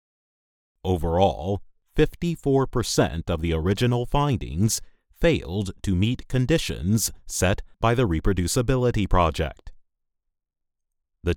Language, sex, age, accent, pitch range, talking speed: English, male, 30-49, American, 85-115 Hz, 85 wpm